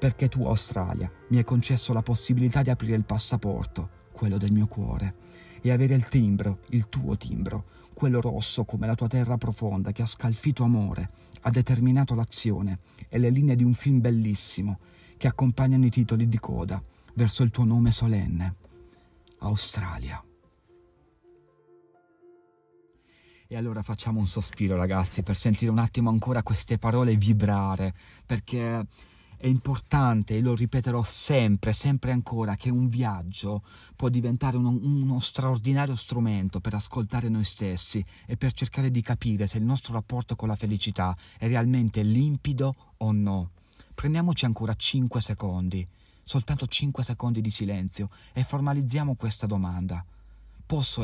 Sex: male